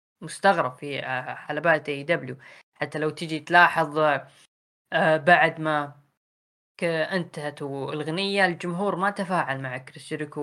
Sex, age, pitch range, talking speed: female, 10-29, 155-185 Hz, 110 wpm